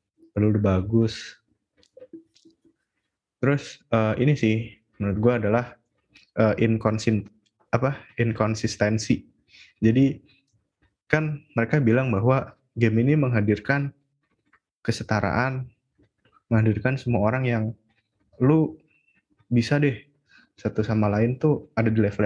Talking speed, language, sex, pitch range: 95 wpm, Indonesian, male, 105-135 Hz